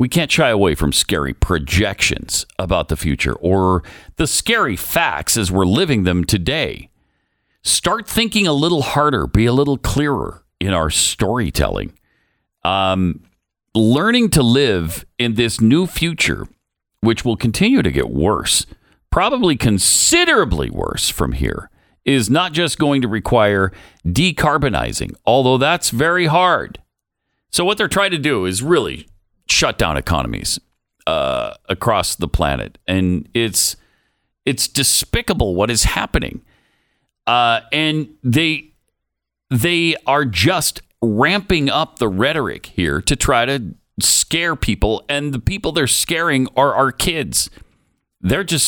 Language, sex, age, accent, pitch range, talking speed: English, male, 50-69, American, 100-150 Hz, 135 wpm